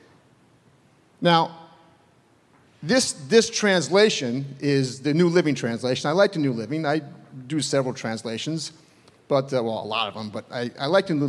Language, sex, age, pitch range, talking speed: English, male, 40-59, 140-185 Hz, 165 wpm